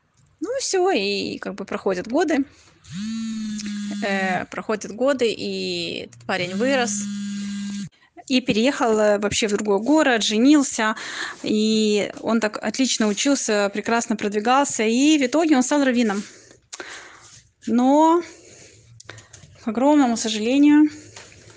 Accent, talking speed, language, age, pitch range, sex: native, 105 wpm, Russian, 20-39, 205-240 Hz, female